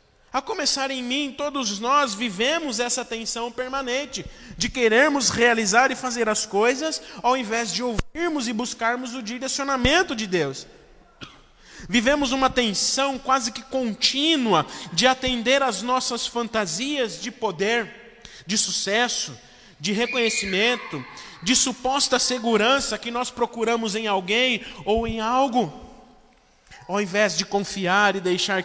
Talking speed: 130 wpm